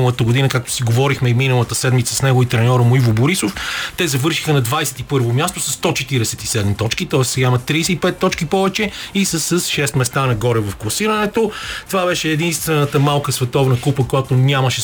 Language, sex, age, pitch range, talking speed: Bulgarian, male, 30-49, 120-155 Hz, 170 wpm